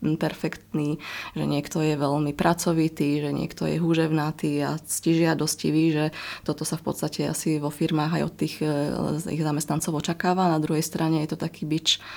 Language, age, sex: Slovak, 20-39, female